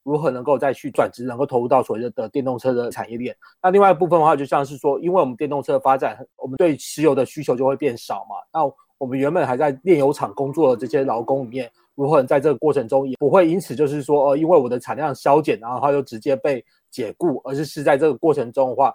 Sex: male